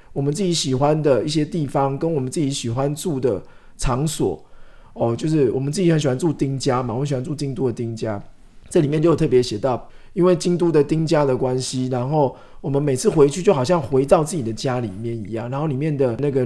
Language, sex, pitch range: Chinese, male, 130-175 Hz